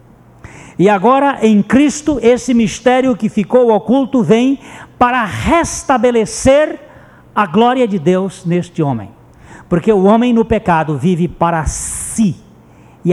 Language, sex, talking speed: Portuguese, male, 125 wpm